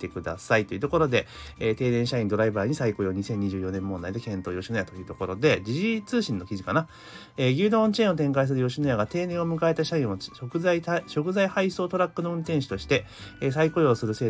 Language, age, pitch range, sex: Japanese, 30-49, 110-170 Hz, male